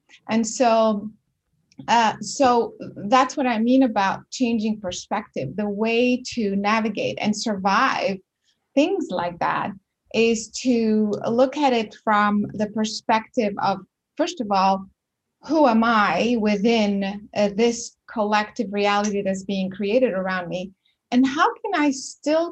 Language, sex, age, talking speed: English, female, 30-49, 135 wpm